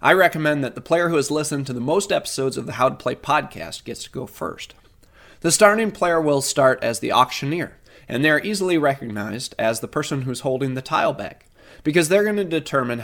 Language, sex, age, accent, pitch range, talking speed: English, male, 30-49, American, 115-150 Hz, 215 wpm